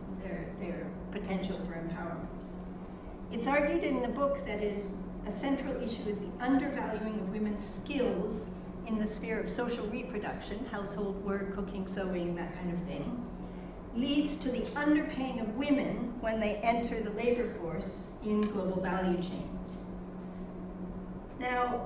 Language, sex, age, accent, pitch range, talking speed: English, female, 60-79, American, 190-245 Hz, 145 wpm